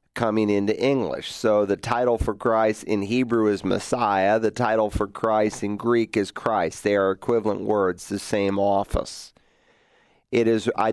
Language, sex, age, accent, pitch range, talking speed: English, male, 40-59, American, 105-120 Hz, 165 wpm